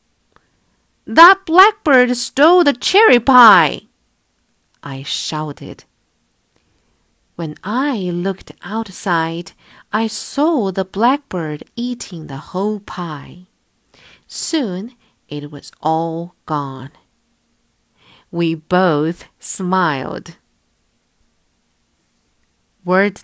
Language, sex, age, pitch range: Chinese, female, 50-69, 155-225 Hz